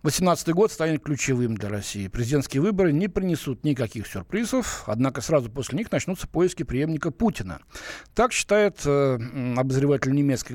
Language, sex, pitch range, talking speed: Russian, male, 115-170 Hz, 140 wpm